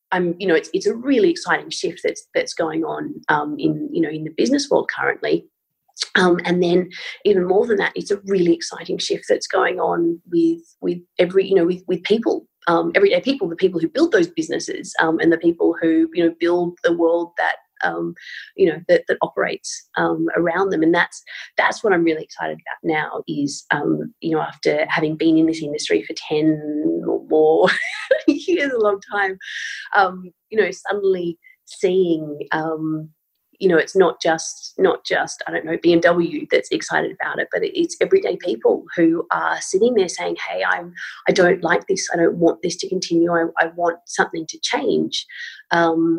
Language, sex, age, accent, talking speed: English, female, 30-49, Australian, 195 wpm